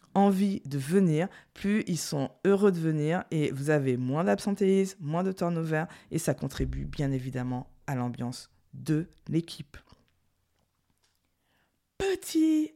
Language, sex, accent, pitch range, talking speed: French, female, French, 135-190 Hz, 125 wpm